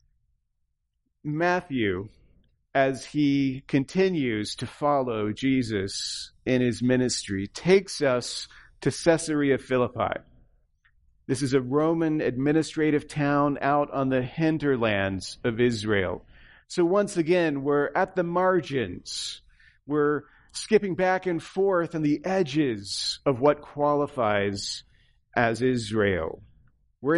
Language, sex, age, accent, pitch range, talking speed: English, male, 40-59, American, 130-175 Hz, 105 wpm